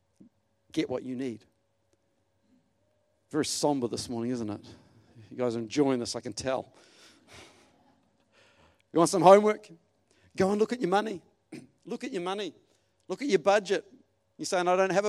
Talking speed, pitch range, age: 165 wpm, 125-180 Hz, 50-69